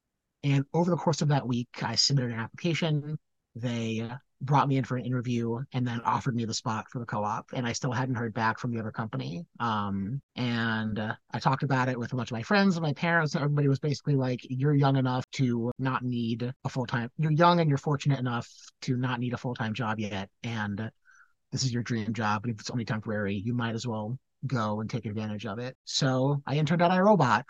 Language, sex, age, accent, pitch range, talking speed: English, male, 30-49, American, 115-135 Hz, 225 wpm